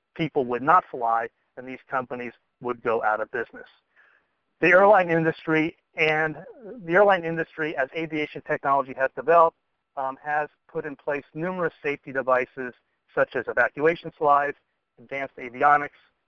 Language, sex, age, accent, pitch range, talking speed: English, male, 40-59, American, 125-150 Hz, 140 wpm